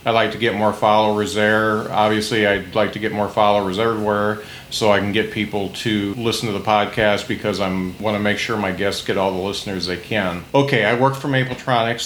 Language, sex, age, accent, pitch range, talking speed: English, male, 40-59, American, 105-120 Hz, 220 wpm